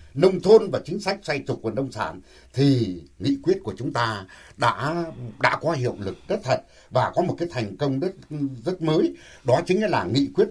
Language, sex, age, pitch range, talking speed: Vietnamese, male, 60-79, 120-170 Hz, 210 wpm